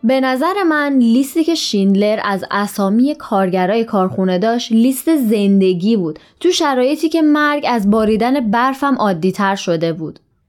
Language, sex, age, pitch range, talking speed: Persian, female, 20-39, 200-255 Hz, 145 wpm